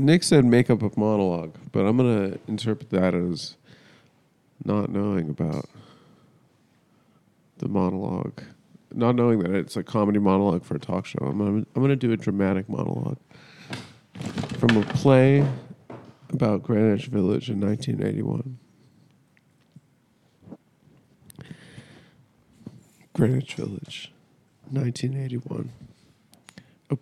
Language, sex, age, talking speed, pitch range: English, male, 40-59, 100 wpm, 105-135 Hz